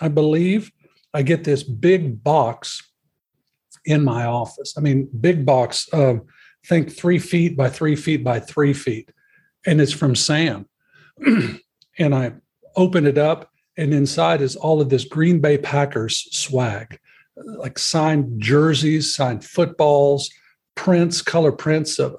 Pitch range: 135-170 Hz